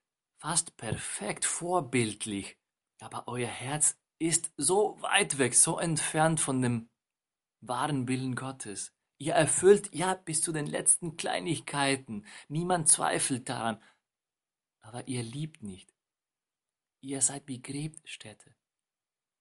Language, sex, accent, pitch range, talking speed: German, male, German, 120-160 Hz, 110 wpm